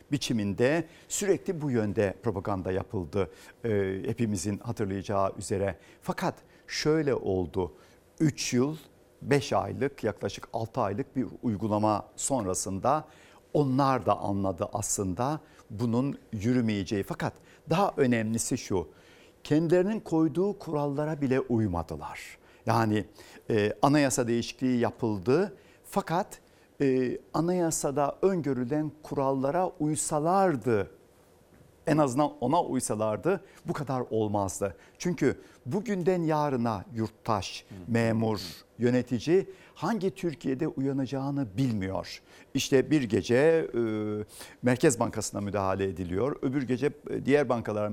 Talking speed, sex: 95 wpm, male